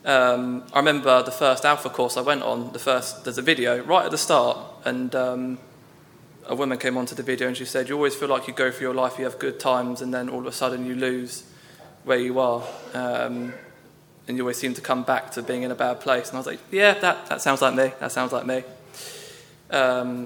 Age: 20-39